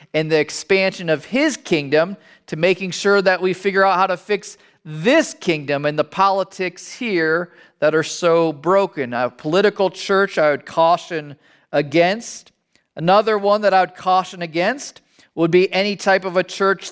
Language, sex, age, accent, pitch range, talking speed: English, male, 40-59, American, 160-195 Hz, 165 wpm